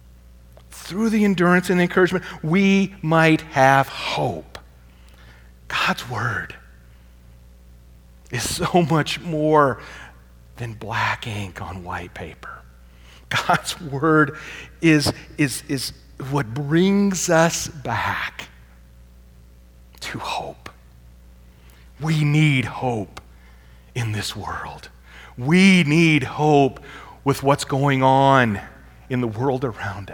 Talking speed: 100 wpm